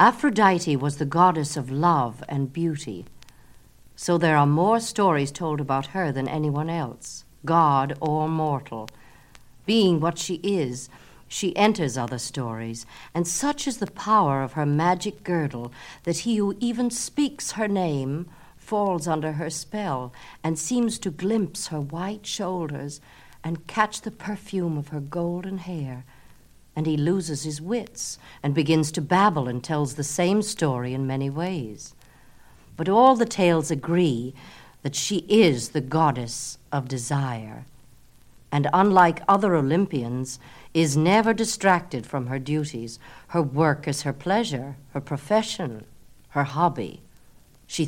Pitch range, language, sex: 135-190 Hz, Italian, female